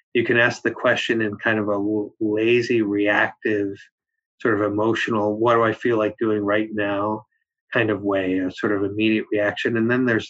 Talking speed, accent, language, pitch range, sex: 190 wpm, American, English, 105-120 Hz, male